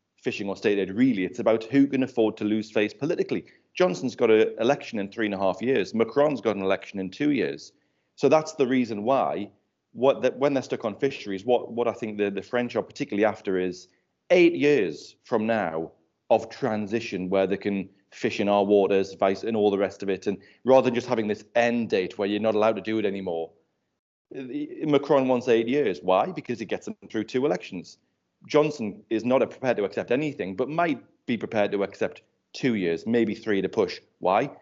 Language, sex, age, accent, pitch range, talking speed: English, male, 30-49, British, 100-130 Hz, 210 wpm